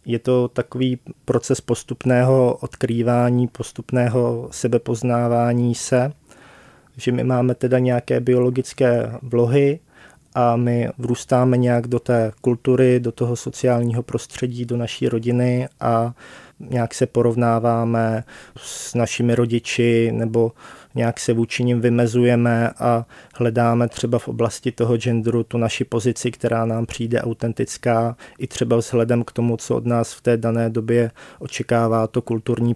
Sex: male